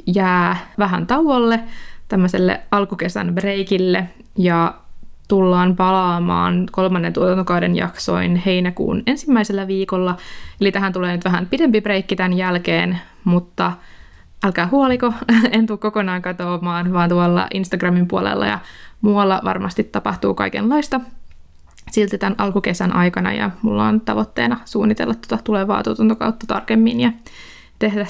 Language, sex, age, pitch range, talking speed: Finnish, female, 20-39, 180-225 Hz, 115 wpm